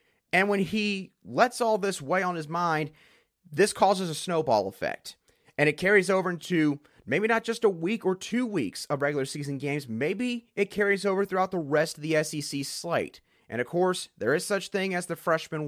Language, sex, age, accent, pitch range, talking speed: English, male, 30-49, American, 145-195 Hz, 205 wpm